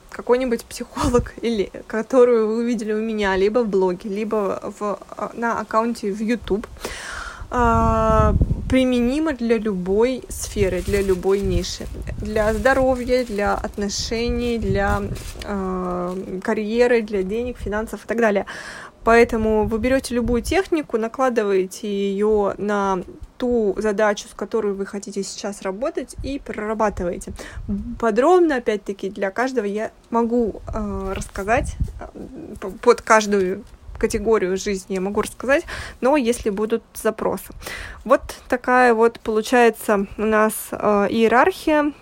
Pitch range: 205-235 Hz